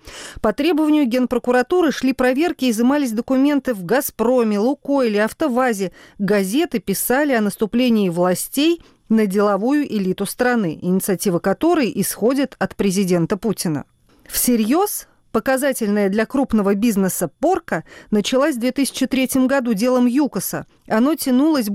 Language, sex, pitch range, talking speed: Russian, female, 210-280 Hz, 115 wpm